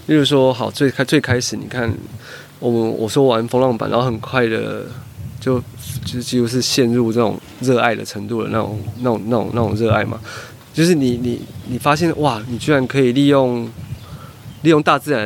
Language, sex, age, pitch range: Chinese, male, 20-39, 115-135 Hz